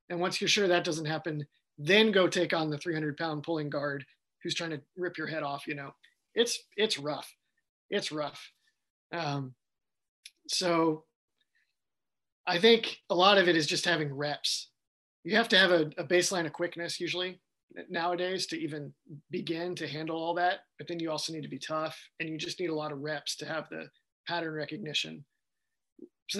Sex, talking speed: male, 185 wpm